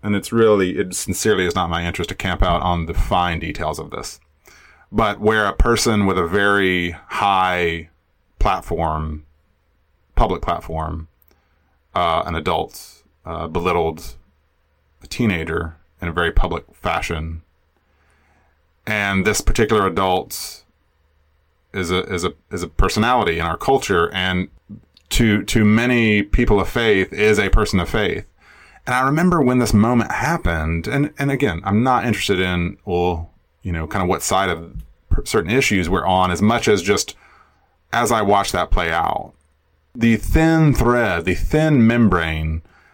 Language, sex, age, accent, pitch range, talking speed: English, male, 30-49, American, 80-105 Hz, 150 wpm